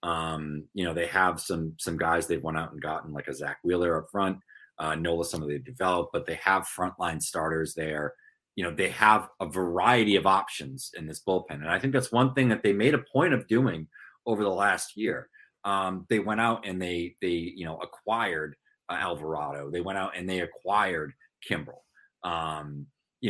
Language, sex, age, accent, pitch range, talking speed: English, male, 30-49, American, 85-115 Hz, 205 wpm